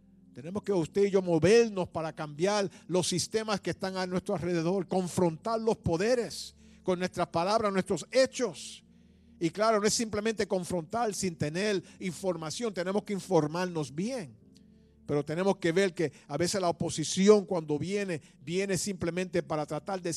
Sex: male